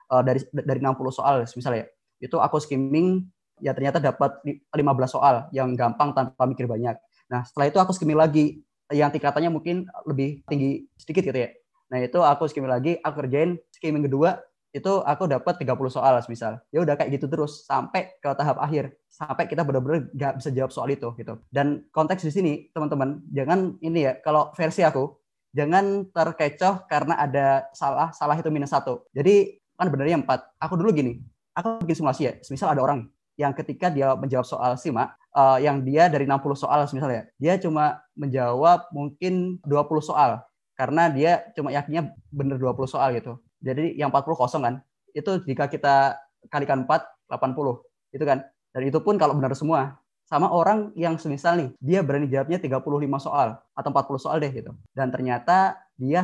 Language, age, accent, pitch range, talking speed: Indonesian, 20-39, native, 135-165 Hz, 175 wpm